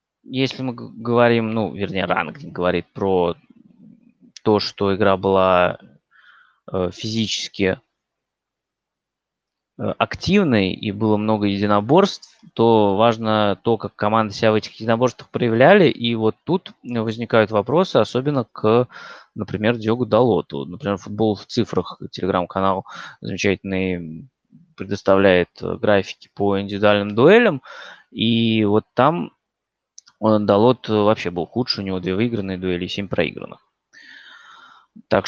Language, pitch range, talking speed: Russian, 100-120 Hz, 110 wpm